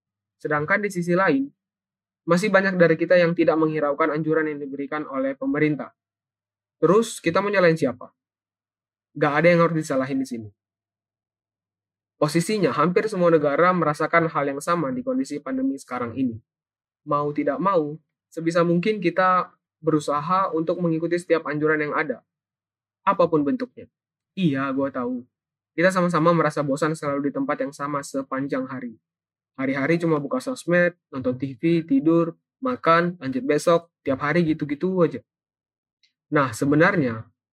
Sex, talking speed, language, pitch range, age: male, 135 wpm, Indonesian, 135-170 Hz, 20-39